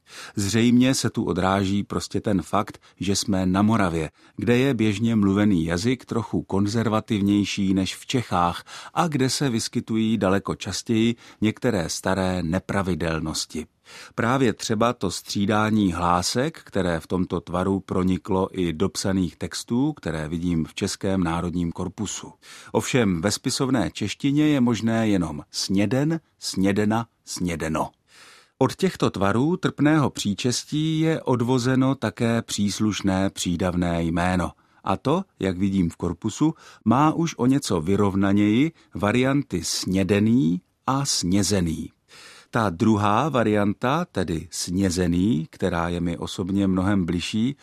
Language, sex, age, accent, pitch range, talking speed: Czech, male, 40-59, native, 95-120 Hz, 120 wpm